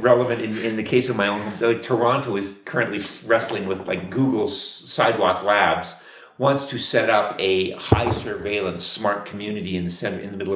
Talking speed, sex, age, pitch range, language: 190 wpm, male, 50-69, 90-120 Hz, Bulgarian